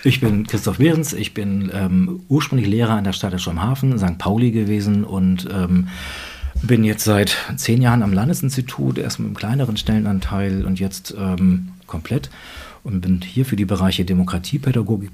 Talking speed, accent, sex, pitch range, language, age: 160 wpm, German, male, 95-110 Hz, German, 40-59